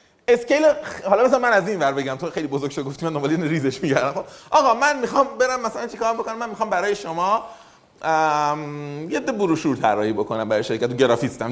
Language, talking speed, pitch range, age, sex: Persian, 205 wpm, 170-255 Hz, 30-49, male